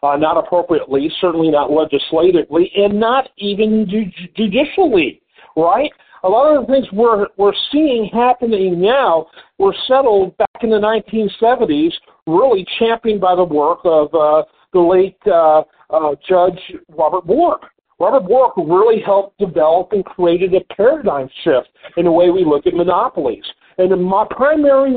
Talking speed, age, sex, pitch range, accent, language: 150 wpm, 50-69, male, 175-245 Hz, American, English